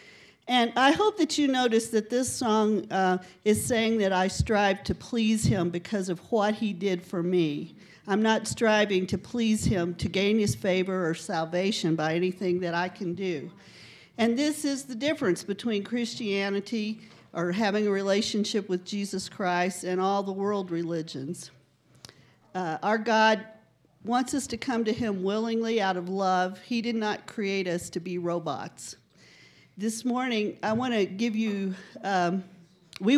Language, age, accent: English, 50-69, American